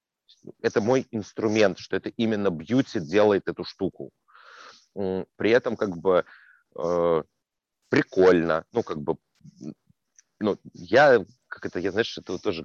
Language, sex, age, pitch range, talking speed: Russian, male, 30-49, 90-115 Hz, 125 wpm